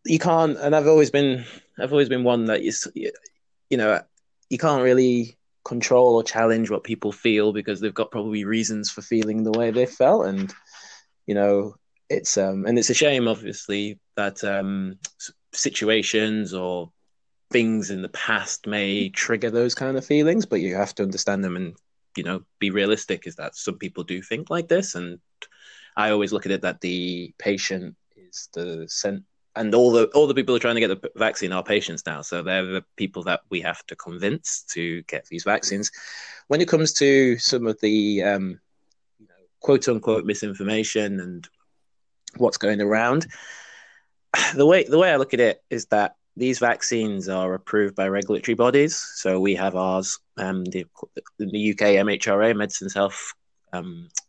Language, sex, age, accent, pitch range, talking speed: English, male, 20-39, British, 95-120 Hz, 180 wpm